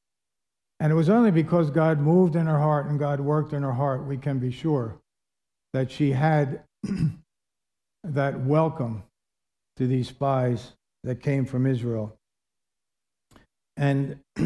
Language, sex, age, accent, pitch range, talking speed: English, male, 60-79, American, 130-160 Hz, 135 wpm